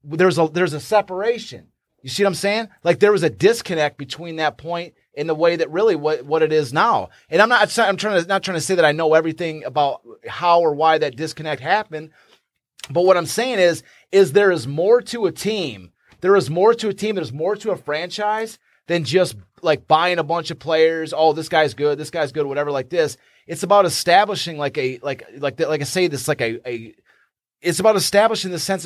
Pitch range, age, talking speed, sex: 155-210 Hz, 30-49, 230 wpm, male